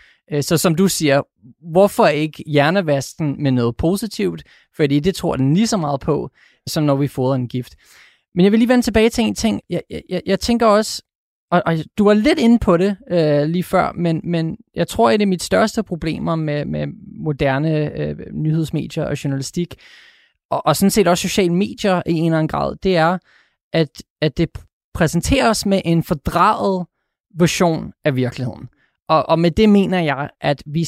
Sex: male